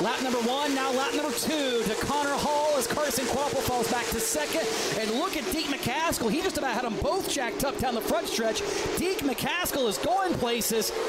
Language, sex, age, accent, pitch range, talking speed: English, male, 30-49, American, 240-345 Hz, 210 wpm